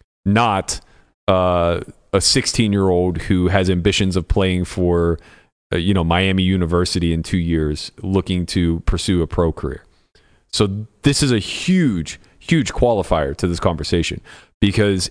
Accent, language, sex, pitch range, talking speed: American, English, male, 90-115 Hz, 140 wpm